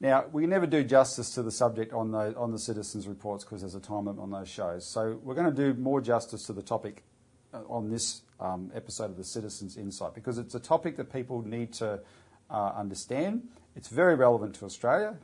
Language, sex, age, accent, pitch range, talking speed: English, male, 40-59, Australian, 110-140 Hz, 215 wpm